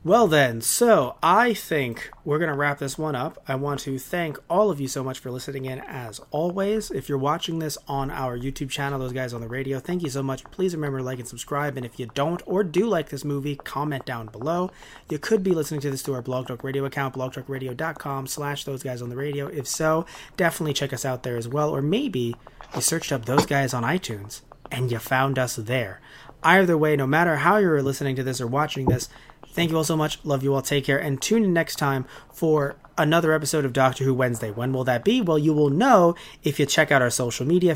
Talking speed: 240 wpm